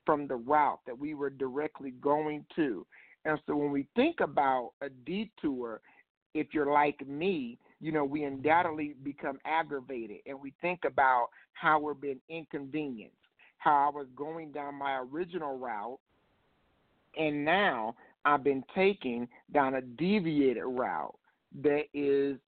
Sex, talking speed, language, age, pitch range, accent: male, 140 wpm, English, 50-69, 145-180 Hz, American